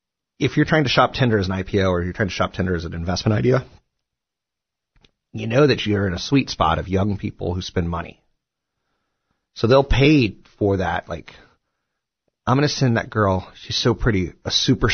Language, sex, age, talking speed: English, male, 30-49, 200 wpm